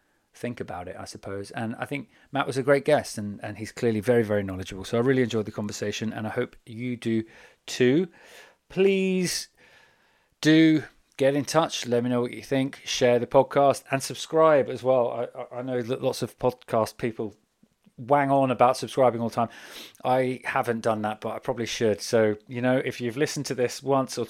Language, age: English, 30-49